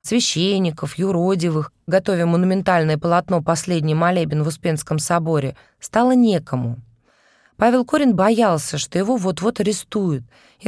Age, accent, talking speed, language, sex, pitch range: 20-39, native, 110 wpm, Russian, female, 155-225 Hz